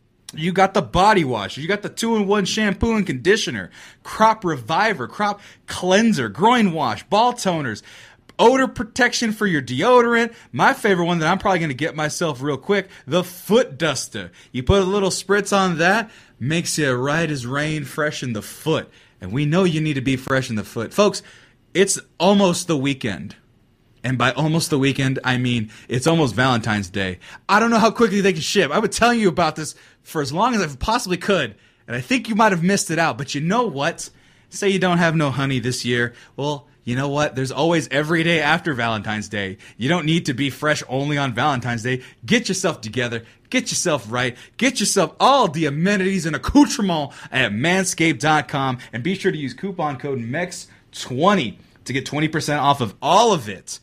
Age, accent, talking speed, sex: 20-39, American, 195 wpm, male